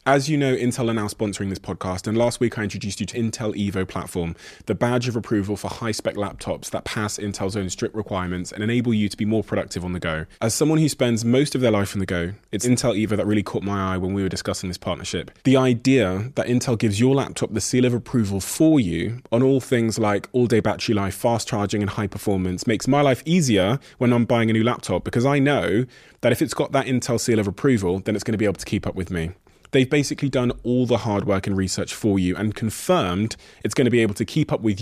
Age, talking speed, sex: 20-39, 255 wpm, male